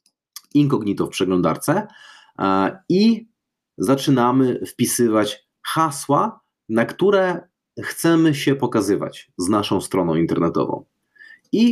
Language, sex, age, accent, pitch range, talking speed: Polish, male, 30-49, native, 120-150 Hz, 90 wpm